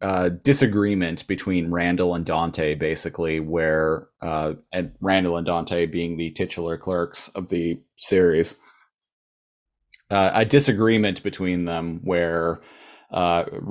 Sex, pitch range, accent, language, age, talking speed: male, 85-105 Hz, American, English, 30-49, 120 wpm